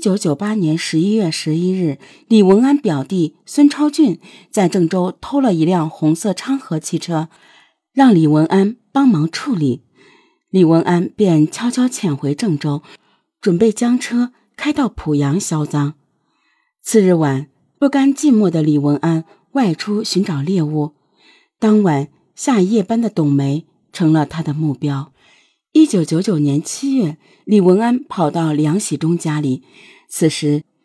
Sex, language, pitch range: female, Chinese, 155-225 Hz